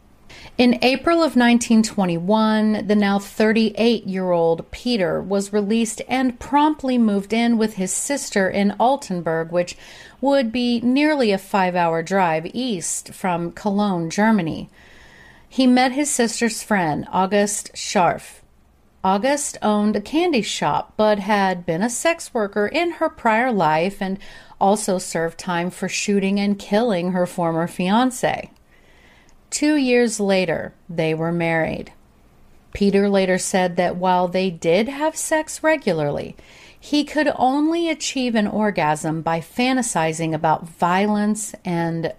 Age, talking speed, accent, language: 40-59, 130 wpm, American, English